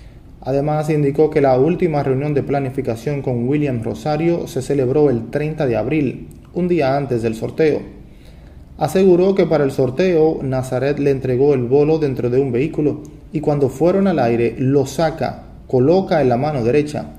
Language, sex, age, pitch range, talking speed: Spanish, male, 30-49, 125-155 Hz, 170 wpm